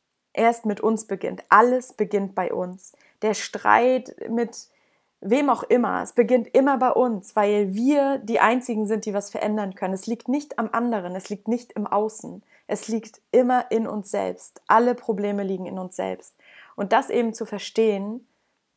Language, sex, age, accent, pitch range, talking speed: German, female, 20-39, German, 190-225 Hz, 175 wpm